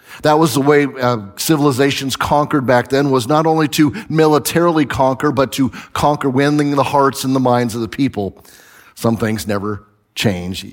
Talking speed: 175 wpm